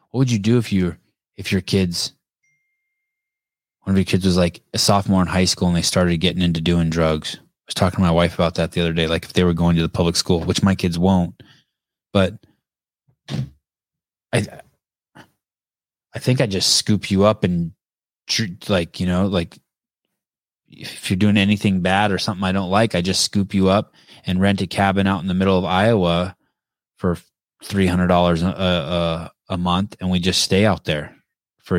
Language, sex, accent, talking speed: English, male, American, 200 wpm